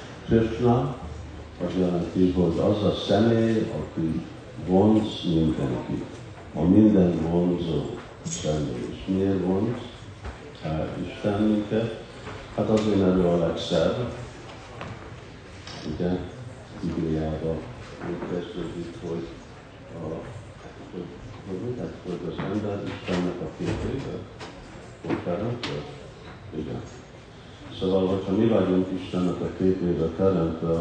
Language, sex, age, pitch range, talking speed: Hungarian, male, 50-69, 85-110 Hz, 80 wpm